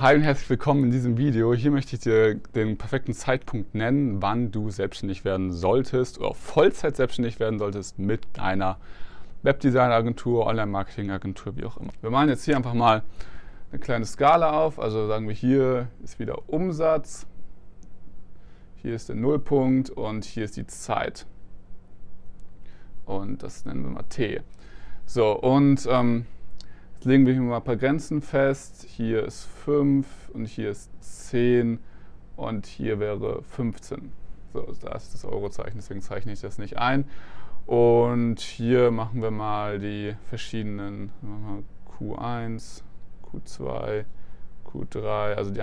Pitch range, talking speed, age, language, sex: 100-125 Hz, 140 wpm, 20-39, German, male